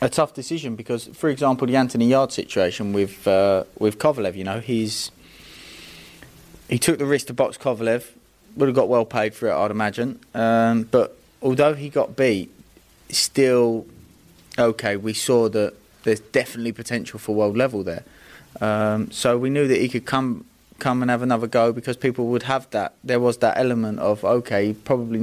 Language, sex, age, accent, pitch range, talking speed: English, male, 20-39, British, 105-130 Hz, 180 wpm